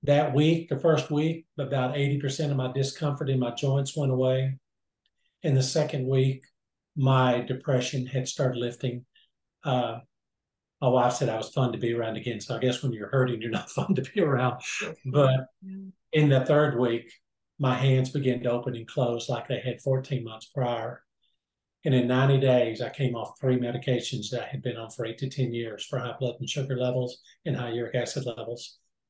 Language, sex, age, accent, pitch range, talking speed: English, male, 50-69, American, 120-135 Hz, 195 wpm